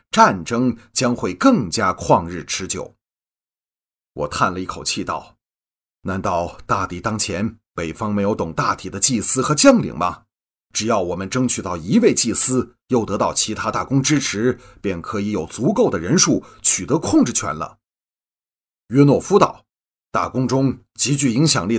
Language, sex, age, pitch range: Chinese, male, 30-49, 100-135 Hz